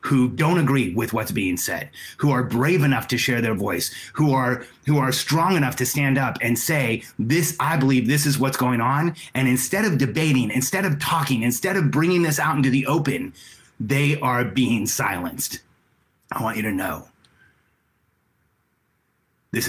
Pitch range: 115-140 Hz